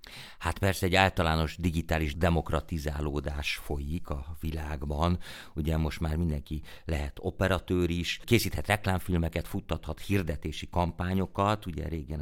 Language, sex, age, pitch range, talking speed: Hungarian, male, 50-69, 80-95 Hz, 115 wpm